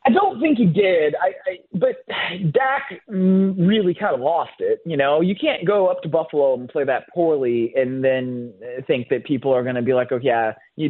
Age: 20-39